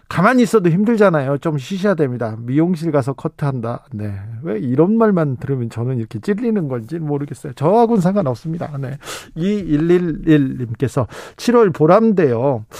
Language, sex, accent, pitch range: Korean, male, native, 140-185 Hz